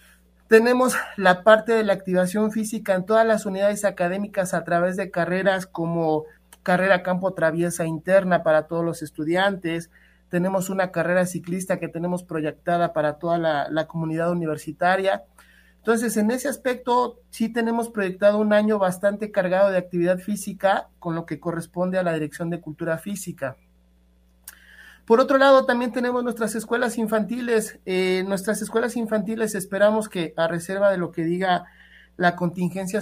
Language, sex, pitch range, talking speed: Spanish, male, 170-205 Hz, 155 wpm